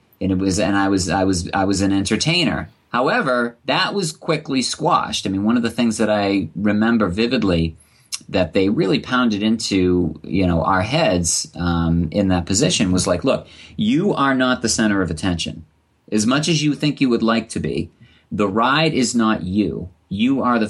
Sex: male